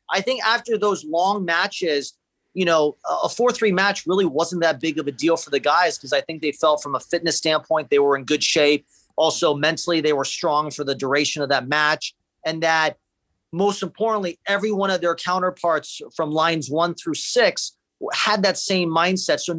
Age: 40-59